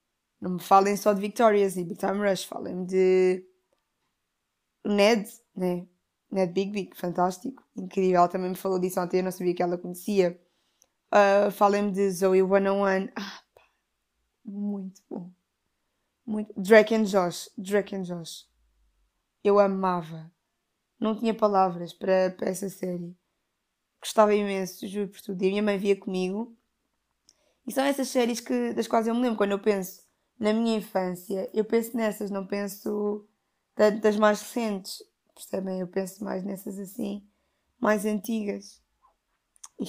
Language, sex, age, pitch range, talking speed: Portuguese, female, 20-39, 185-215 Hz, 150 wpm